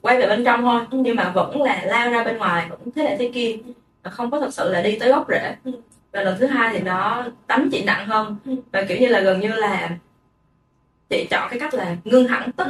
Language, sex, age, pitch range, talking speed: Vietnamese, female, 20-39, 195-260 Hz, 245 wpm